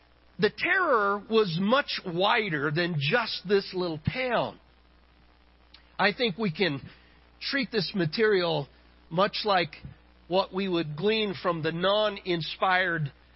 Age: 50-69